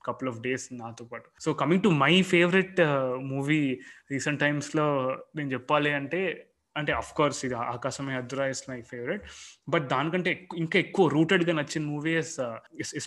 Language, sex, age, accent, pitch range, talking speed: Telugu, male, 20-39, native, 135-160 Hz, 150 wpm